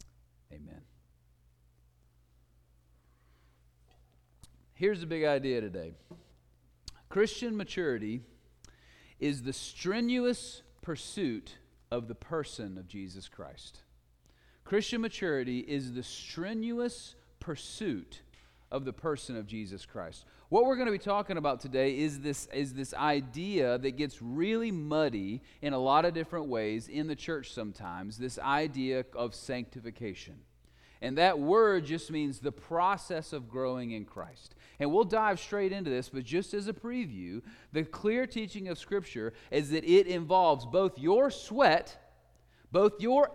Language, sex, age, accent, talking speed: English, male, 40-59, American, 135 wpm